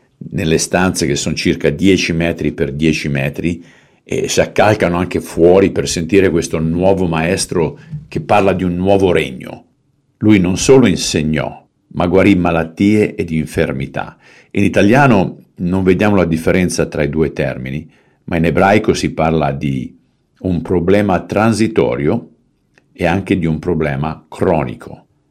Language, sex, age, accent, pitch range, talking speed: Italian, male, 50-69, native, 80-95 Hz, 140 wpm